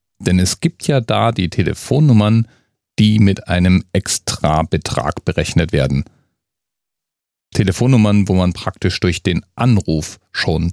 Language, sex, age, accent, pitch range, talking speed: German, male, 40-59, German, 90-110 Hz, 115 wpm